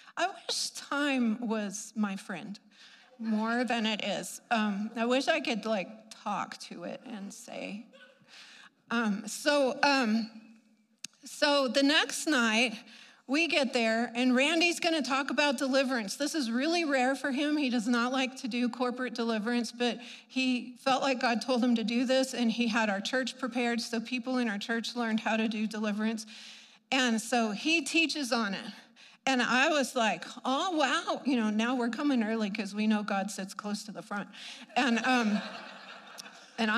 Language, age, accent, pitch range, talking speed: English, 40-59, American, 225-275 Hz, 175 wpm